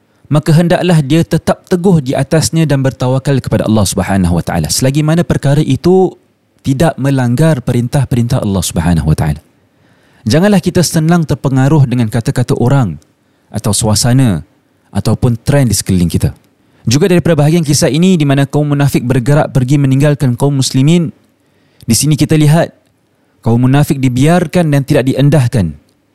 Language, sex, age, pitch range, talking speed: Malay, male, 30-49, 130-165 Hz, 135 wpm